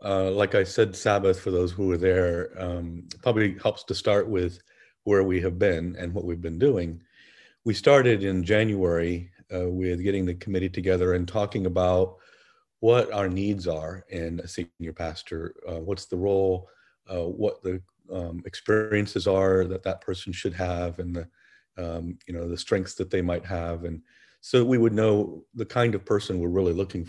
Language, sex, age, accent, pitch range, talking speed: English, male, 40-59, American, 90-105 Hz, 185 wpm